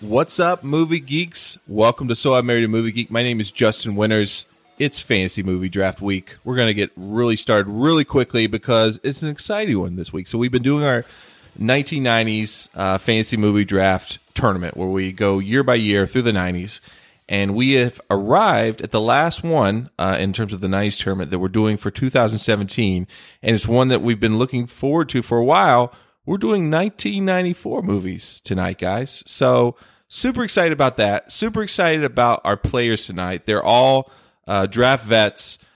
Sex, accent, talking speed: male, American, 185 wpm